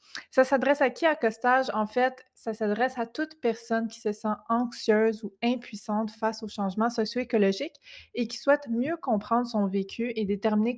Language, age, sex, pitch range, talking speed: French, 20-39, female, 205-240 Hz, 180 wpm